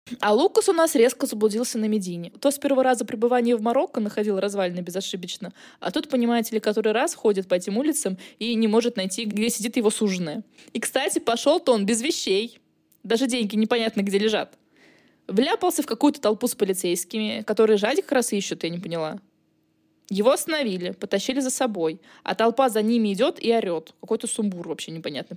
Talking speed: 185 wpm